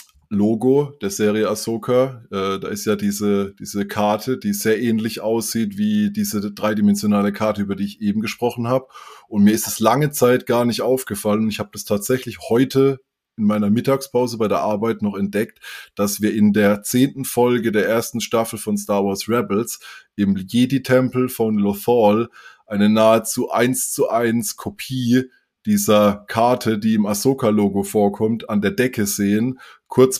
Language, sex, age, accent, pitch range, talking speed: German, male, 20-39, German, 105-120 Hz, 160 wpm